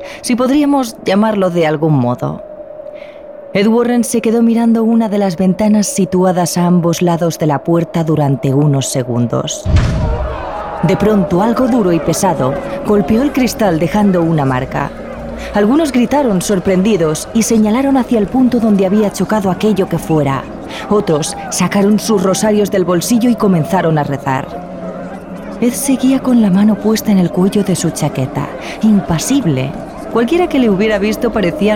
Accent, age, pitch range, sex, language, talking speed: Spanish, 20-39, 165-220 Hz, female, Spanish, 150 wpm